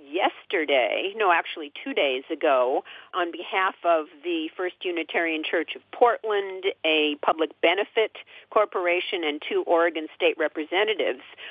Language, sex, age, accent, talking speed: English, female, 50-69, American, 125 wpm